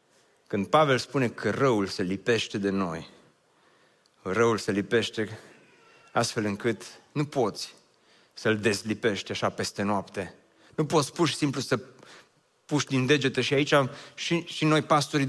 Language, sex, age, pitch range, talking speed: Romanian, male, 30-49, 150-215 Hz, 140 wpm